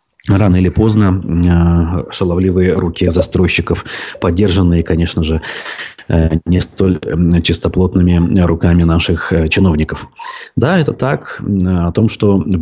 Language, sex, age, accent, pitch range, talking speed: Russian, male, 30-49, native, 90-110 Hz, 105 wpm